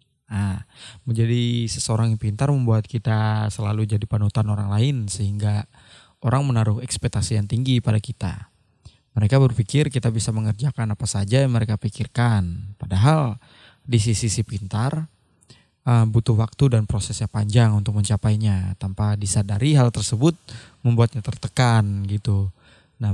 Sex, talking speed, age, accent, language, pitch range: male, 125 wpm, 20-39, native, Indonesian, 110-125 Hz